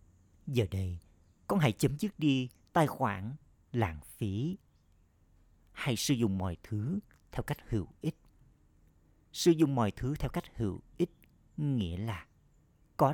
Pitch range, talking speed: 95-135 Hz, 140 wpm